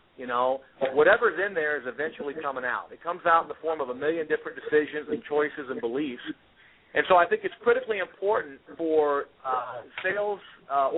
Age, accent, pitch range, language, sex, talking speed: 50-69, American, 140-175 Hz, English, male, 190 wpm